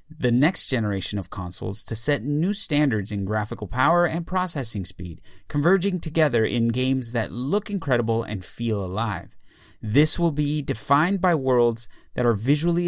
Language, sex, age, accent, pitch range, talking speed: English, male, 30-49, American, 105-145 Hz, 160 wpm